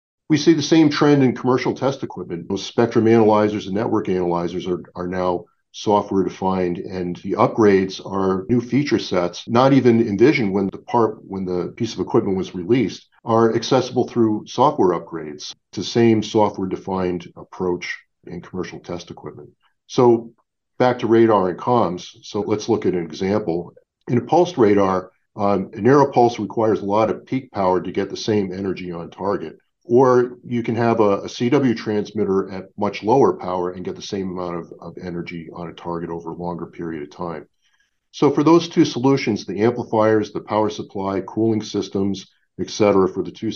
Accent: American